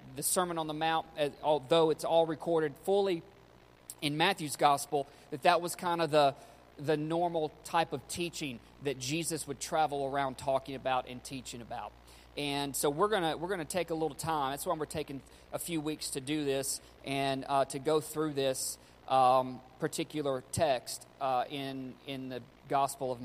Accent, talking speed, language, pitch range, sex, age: American, 180 wpm, English, 135-165 Hz, male, 40-59